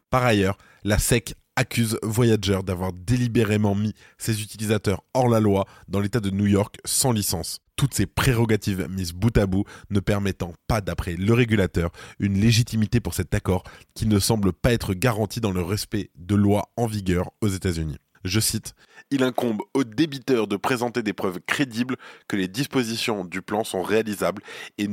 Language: French